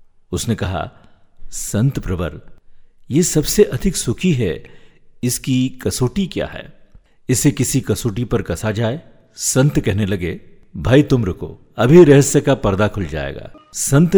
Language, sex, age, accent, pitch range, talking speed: Hindi, male, 50-69, native, 95-130 Hz, 135 wpm